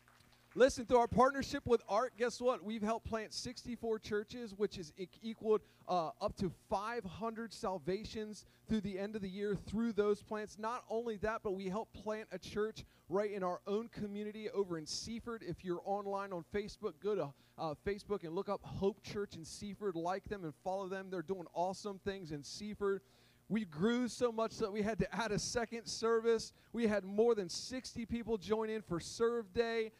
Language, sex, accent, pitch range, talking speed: English, male, American, 195-230 Hz, 195 wpm